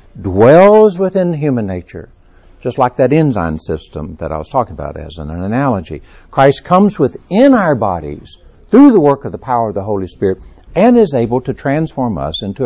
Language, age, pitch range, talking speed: English, 60-79, 85-120 Hz, 185 wpm